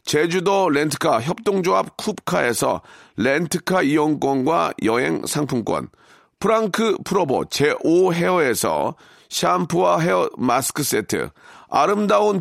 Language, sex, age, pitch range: Korean, male, 40-59, 145-200 Hz